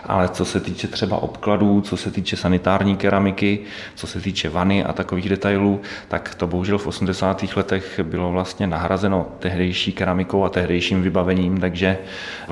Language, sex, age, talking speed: Czech, male, 30-49, 165 wpm